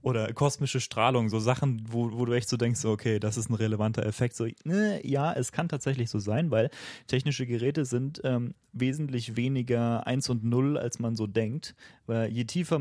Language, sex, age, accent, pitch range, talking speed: German, male, 30-49, German, 110-130 Hz, 195 wpm